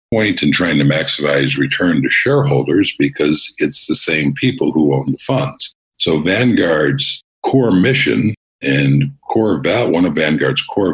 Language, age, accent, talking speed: English, 50-69, American, 150 wpm